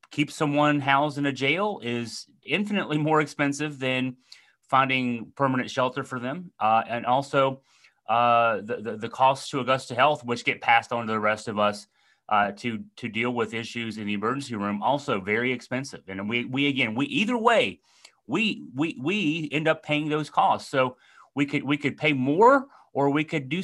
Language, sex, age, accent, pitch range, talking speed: English, male, 30-49, American, 115-145 Hz, 190 wpm